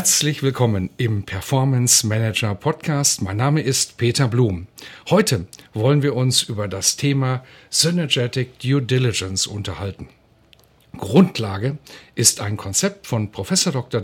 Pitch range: 115-155 Hz